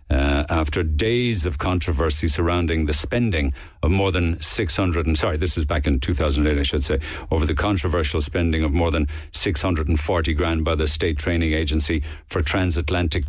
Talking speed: 200 wpm